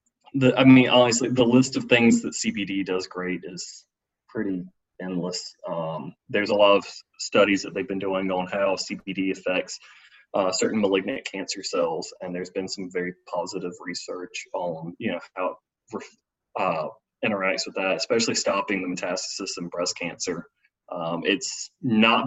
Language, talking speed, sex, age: English, 160 wpm, male, 30-49